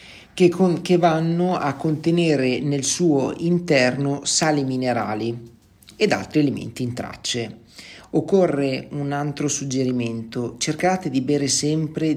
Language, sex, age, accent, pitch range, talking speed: Italian, male, 40-59, native, 125-165 Hz, 120 wpm